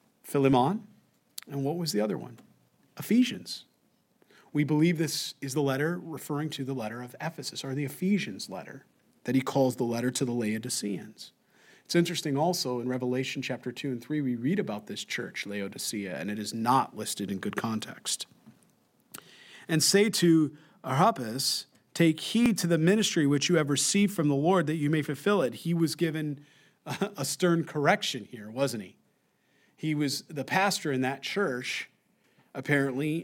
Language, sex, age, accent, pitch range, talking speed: English, male, 40-59, American, 140-175 Hz, 170 wpm